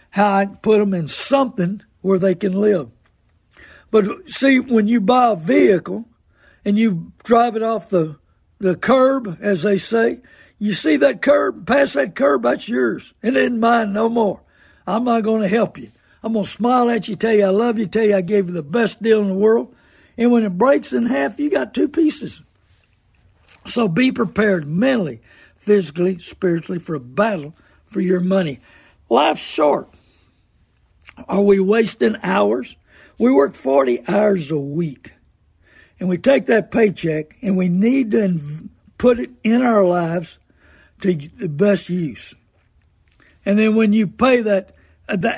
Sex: male